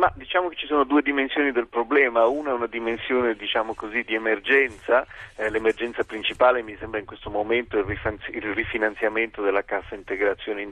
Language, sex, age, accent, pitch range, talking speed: Italian, male, 40-59, native, 105-125 Hz, 185 wpm